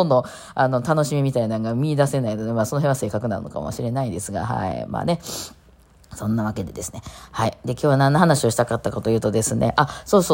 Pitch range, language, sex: 120-160 Hz, Japanese, female